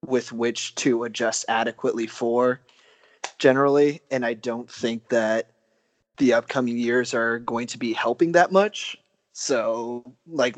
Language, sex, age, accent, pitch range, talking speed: English, male, 20-39, American, 115-125 Hz, 135 wpm